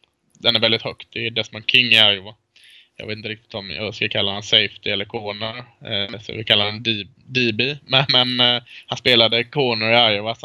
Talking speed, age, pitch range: 205 wpm, 20-39, 110-125 Hz